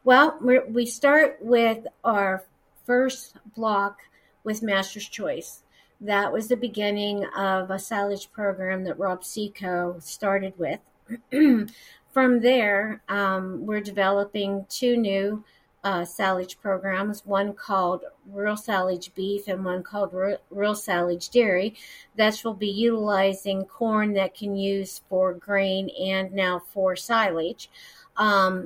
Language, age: English, 50-69